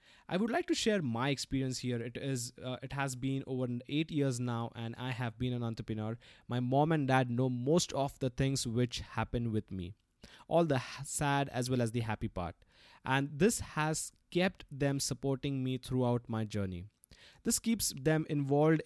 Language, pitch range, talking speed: English, 120-150 Hz, 190 wpm